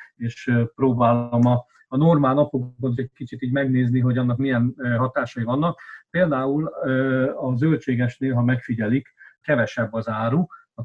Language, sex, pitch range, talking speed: Hungarian, male, 115-135 Hz, 145 wpm